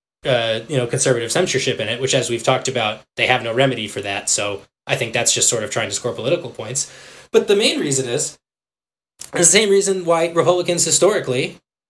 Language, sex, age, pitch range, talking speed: English, male, 20-39, 130-175 Hz, 205 wpm